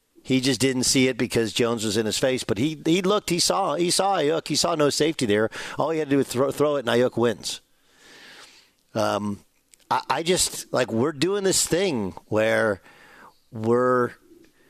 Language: English